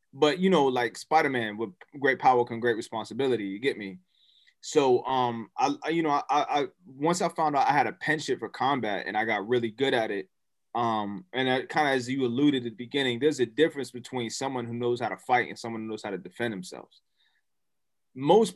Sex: male